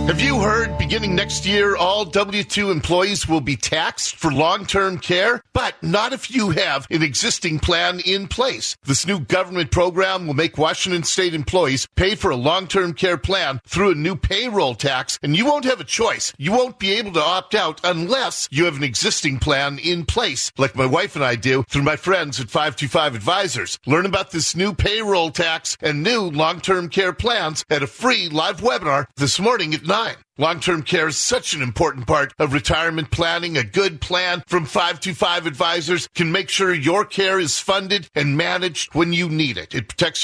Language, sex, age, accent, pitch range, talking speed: English, male, 50-69, American, 145-195 Hz, 190 wpm